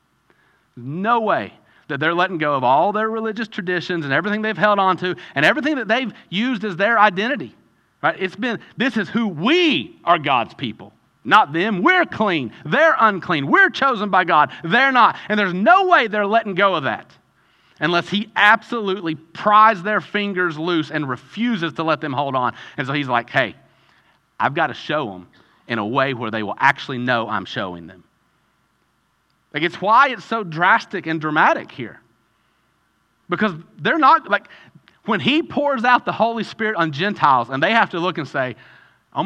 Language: English